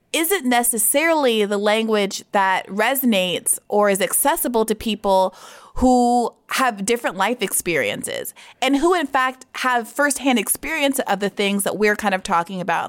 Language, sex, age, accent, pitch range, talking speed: English, female, 20-39, American, 190-250 Hz, 150 wpm